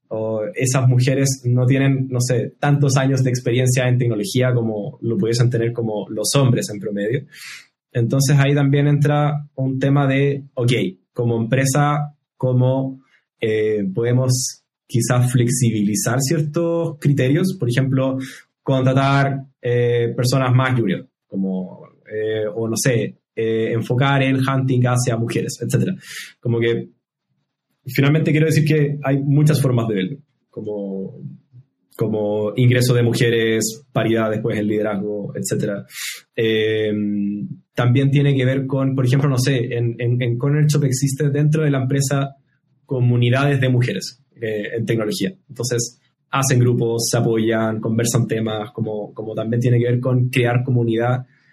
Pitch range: 115-140 Hz